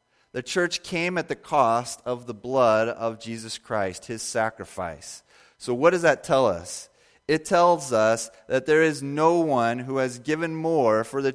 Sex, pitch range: male, 105-125 Hz